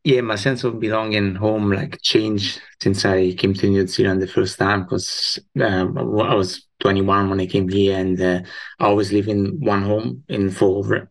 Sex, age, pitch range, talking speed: male, 20-39, 90-100 Hz, 195 wpm